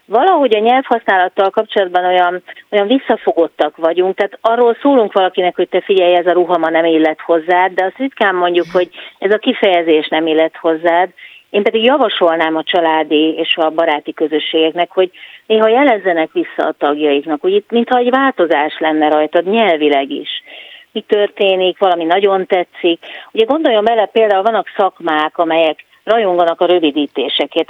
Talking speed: 150 wpm